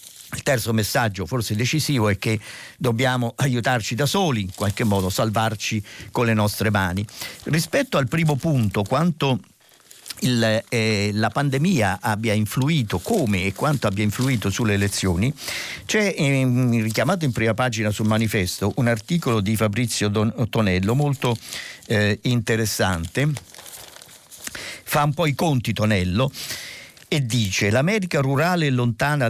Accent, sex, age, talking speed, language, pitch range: native, male, 50-69, 130 wpm, Italian, 105-145 Hz